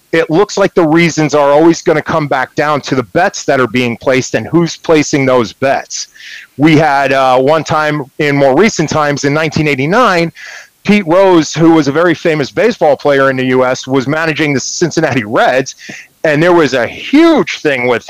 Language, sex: English, male